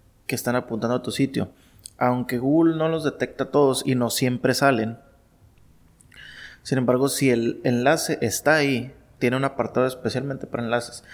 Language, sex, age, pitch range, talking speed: Spanish, male, 20-39, 115-135 Hz, 155 wpm